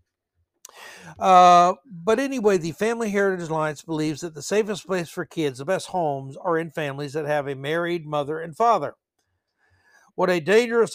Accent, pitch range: American, 135-185 Hz